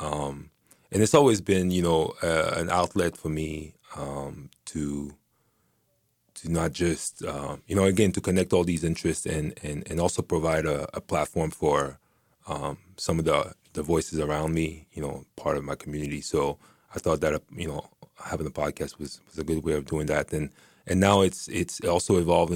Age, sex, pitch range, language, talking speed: 30-49, male, 75-85 Hz, English, 195 wpm